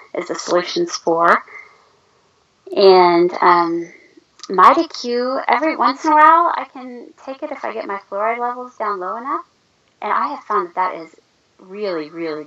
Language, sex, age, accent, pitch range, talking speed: English, female, 20-39, American, 170-245 Hz, 170 wpm